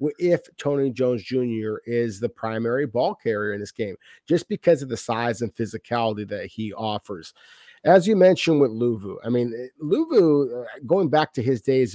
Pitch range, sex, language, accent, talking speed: 115-140 Hz, male, English, American, 175 wpm